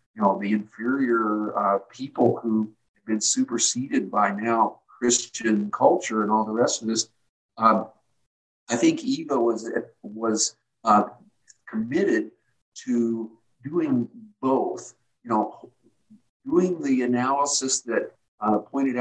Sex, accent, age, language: male, American, 50-69, English